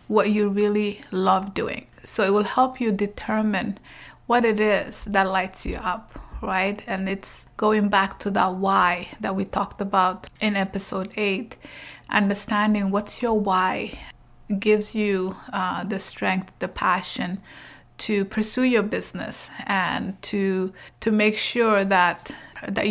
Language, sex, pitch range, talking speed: English, female, 195-220 Hz, 145 wpm